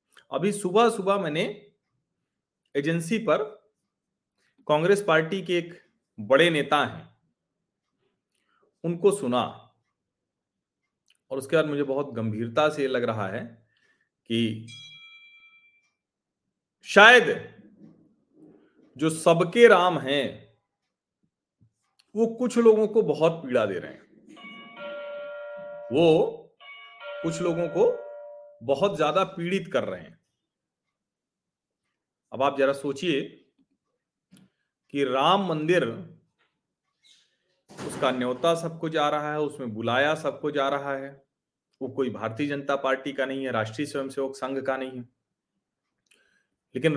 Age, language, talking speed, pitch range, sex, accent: 40-59, Hindi, 105 wpm, 135-195 Hz, male, native